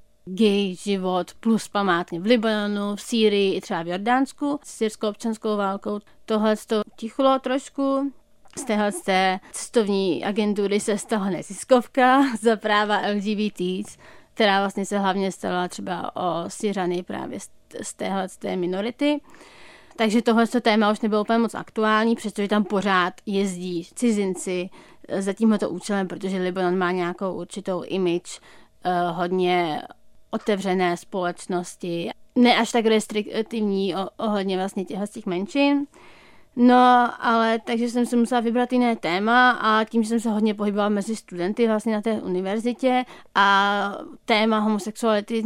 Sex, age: female, 30-49